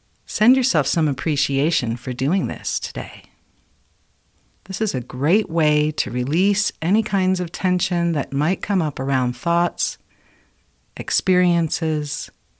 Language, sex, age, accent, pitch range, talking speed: English, female, 50-69, American, 125-180 Hz, 125 wpm